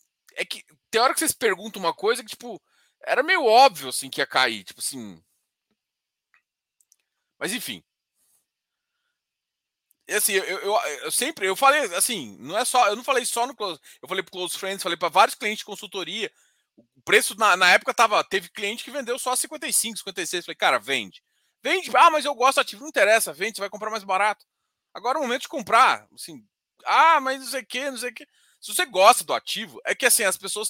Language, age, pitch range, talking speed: Portuguese, 20-39, 195-275 Hz, 210 wpm